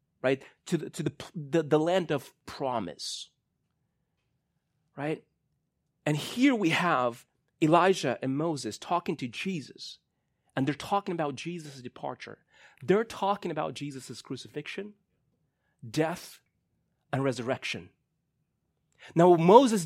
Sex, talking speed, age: male, 110 wpm, 30-49